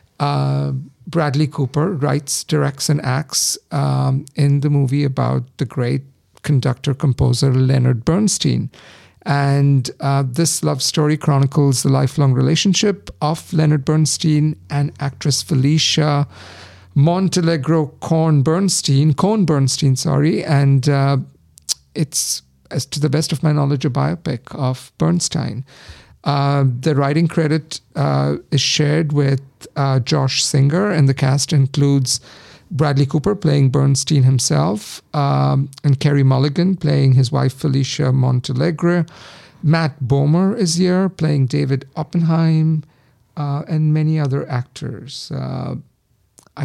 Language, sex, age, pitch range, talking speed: English, male, 50-69, 135-155 Hz, 120 wpm